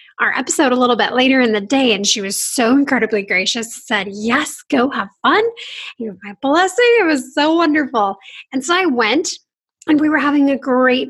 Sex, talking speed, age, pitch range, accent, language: female, 200 wpm, 10-29, 215-280 Hz, American, English